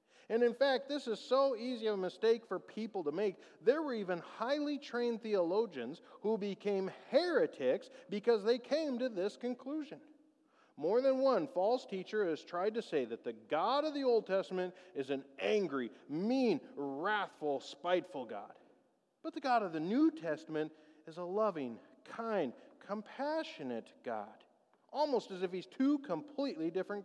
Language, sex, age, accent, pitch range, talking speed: English, male, 40-59, American, 170-255 Hz, 160 wpm